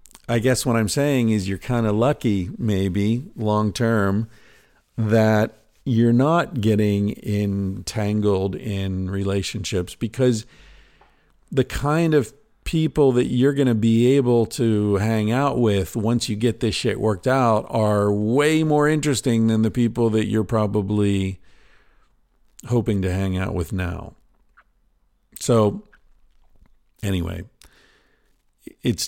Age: 50-69